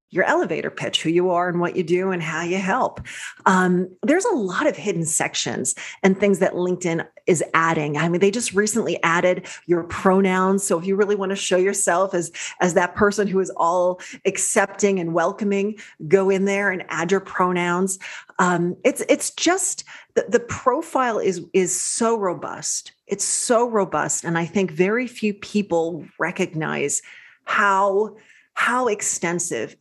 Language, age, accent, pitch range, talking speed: English, 30-49, American, 175-210 Hz, 170 wpm